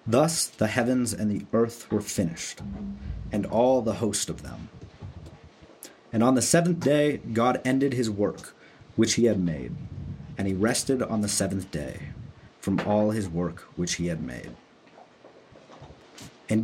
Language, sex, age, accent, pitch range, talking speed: English, male, 30-49, American, 100-125 Hz, 155 wpm